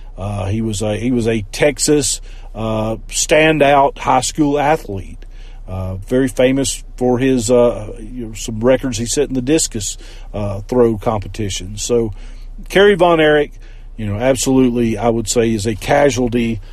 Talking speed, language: 160 wpm, English